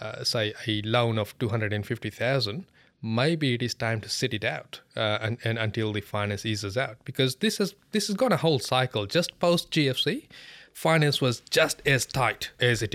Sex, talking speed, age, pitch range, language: male, 210 wpm, 20-39, 105-130 Hz, English